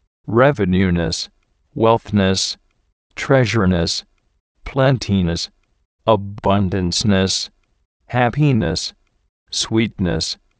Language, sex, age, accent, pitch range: English, male, 50-69, American, 90-115 Hz